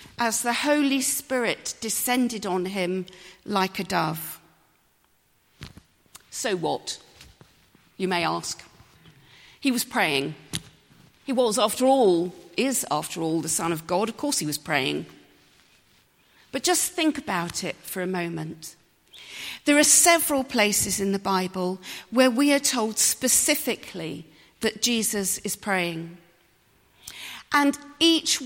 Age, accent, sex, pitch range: 40-59, British, female, 180-255 Hz